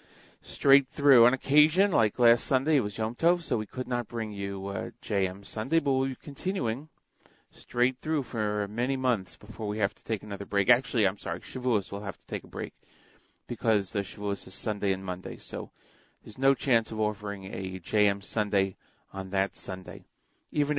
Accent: American